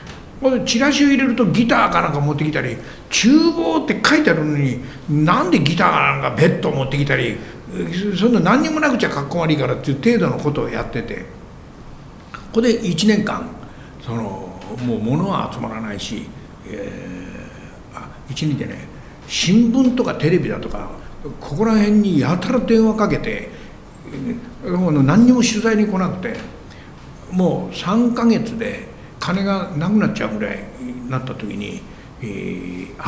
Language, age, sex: Japanese, 60-79, male